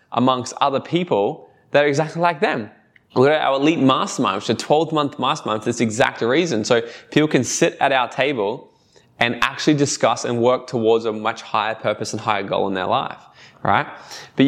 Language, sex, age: English, male, 20-39